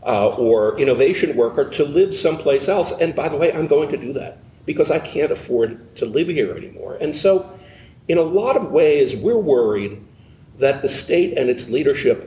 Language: English